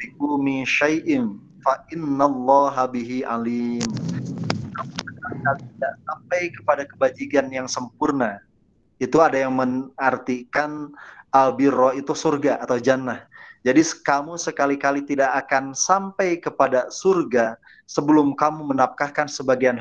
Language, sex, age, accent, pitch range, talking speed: Indonesian, male, 30-49, native, 130-160 Hz, 95 wpm